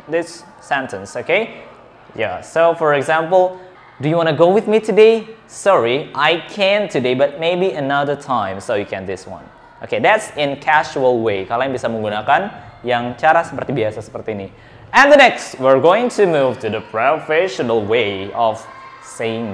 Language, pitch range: Indonesian, 125-180 Hz